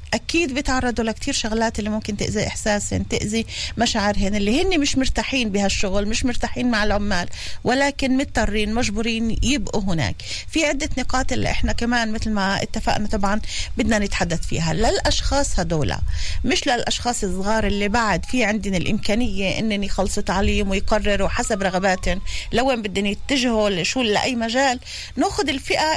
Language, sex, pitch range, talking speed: Hebrew, female, 215-280 Hz, 140 wpm